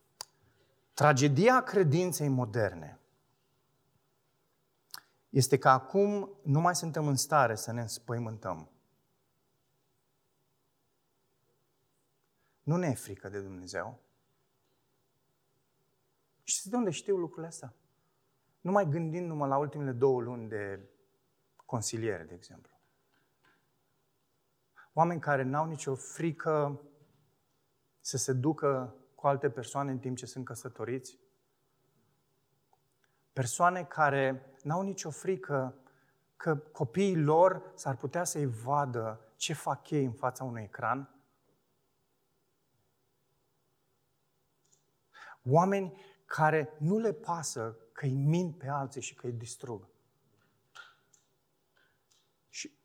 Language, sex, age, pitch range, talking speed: Romanian, male, 30-49, 130-150 Hz, 100 wpm